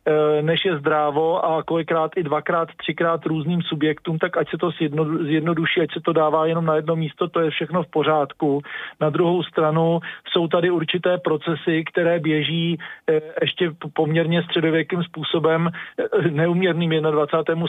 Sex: male